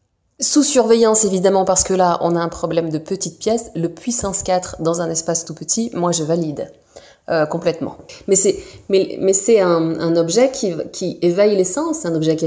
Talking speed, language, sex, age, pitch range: 205 wpm, French, female, 30-49, 165-200 Hz